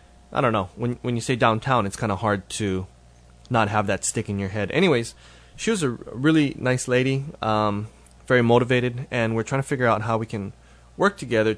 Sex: male